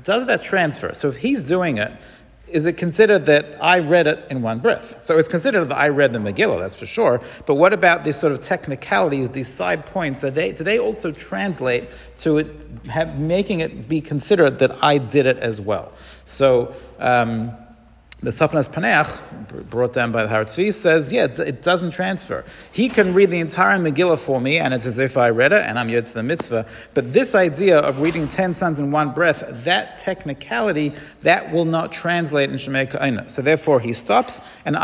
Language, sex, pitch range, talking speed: English, male, 130-170 Hz, 195 wpm